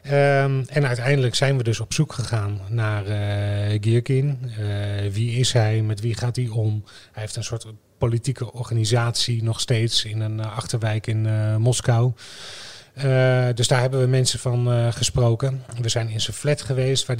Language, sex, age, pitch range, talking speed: Dutch, male, 30-49, 110-125 Hz, 180 wpm